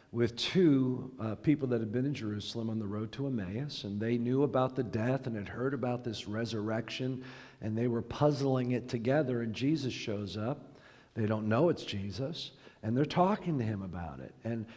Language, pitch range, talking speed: English, 115-145 Hz, 200 wpm